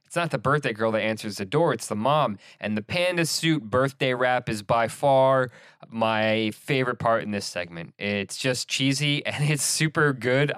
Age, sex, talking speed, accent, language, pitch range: 20-39, male, 195 wpm, American, English, 105-145 Hz